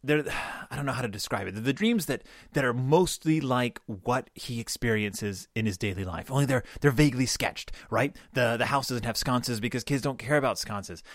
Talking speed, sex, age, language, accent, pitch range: 220 wpm, male, 30-49, English, American, 110-150 Hz